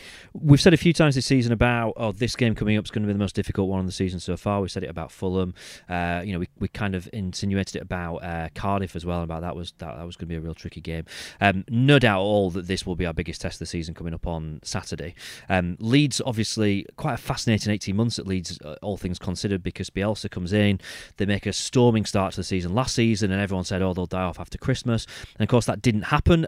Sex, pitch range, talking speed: male, 90-115 Hz, 270 wpm